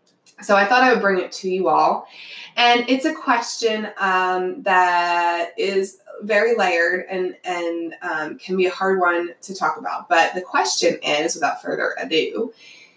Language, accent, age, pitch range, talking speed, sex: English, American, 20-39, 185-235 Hz, 170 wpm, female